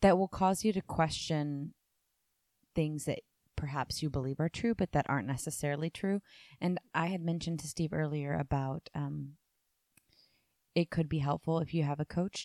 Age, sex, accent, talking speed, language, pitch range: 20-39, female, American, 175 wpm, English, 140-170 Hz